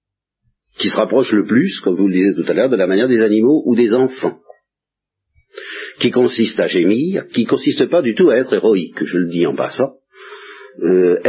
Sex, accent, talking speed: male, French, 205 wpm